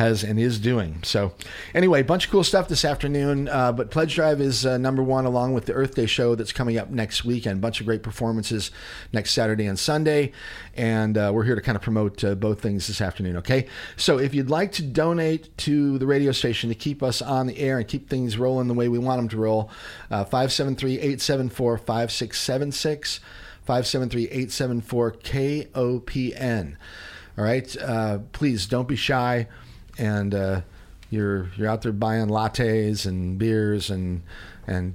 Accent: American